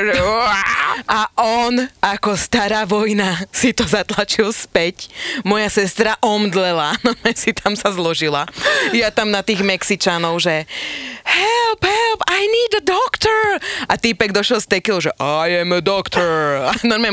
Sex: female